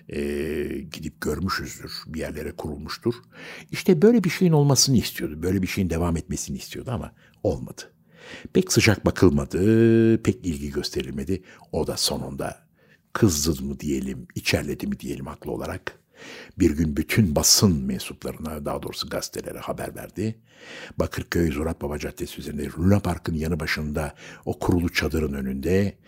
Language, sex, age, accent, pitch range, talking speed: Turkish, male, 60-79, native, 75-110 Hz, 135 wpm